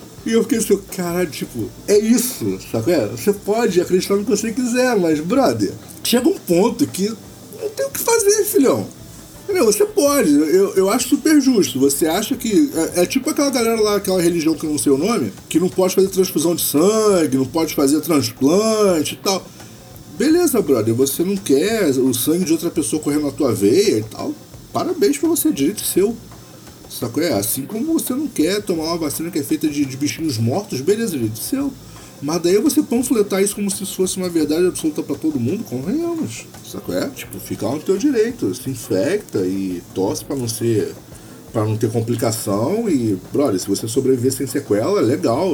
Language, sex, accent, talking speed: Portuguese, male, Brazilian, 195 wpm